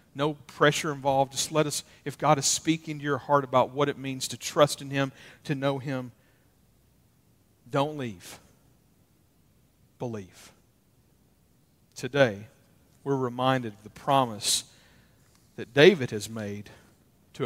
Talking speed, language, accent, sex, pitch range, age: 130 wpm, English, American, male, 110-130 Hz, 50-69